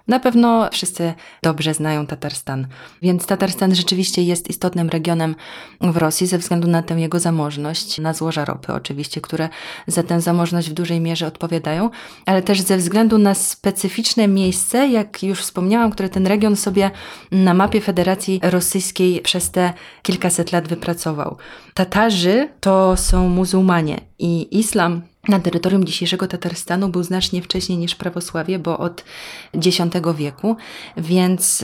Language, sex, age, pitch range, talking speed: Polish, female, 20-39, 170-190 Hz, 140 wpm